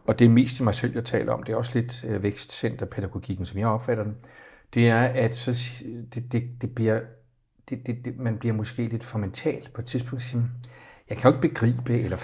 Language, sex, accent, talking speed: Danish, male, native, 235 wpm